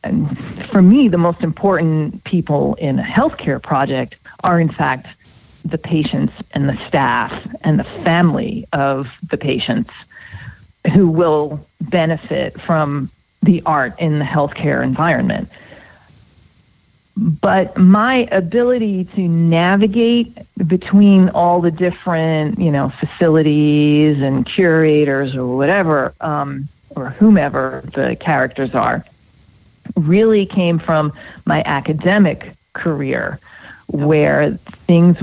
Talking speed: 110 wpm